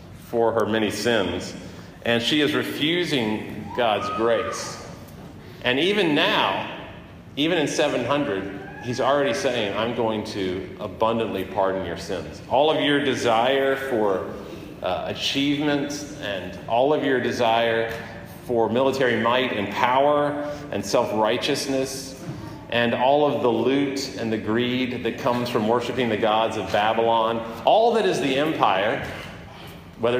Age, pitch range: 40-59, 105-140 Hz